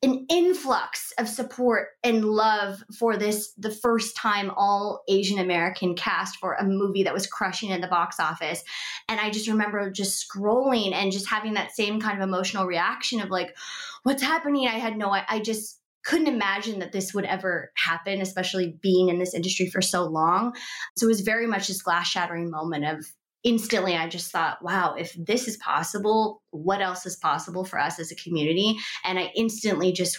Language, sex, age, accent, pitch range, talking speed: English, female, 20-39, American, 180-225 Hz, 195 wpm